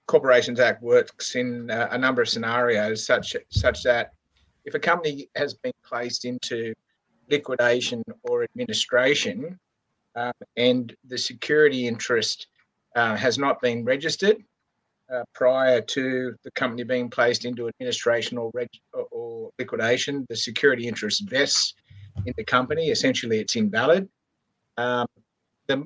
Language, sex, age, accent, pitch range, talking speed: English, male, 50-69, Australian, 115-160 Hz, 130 wpm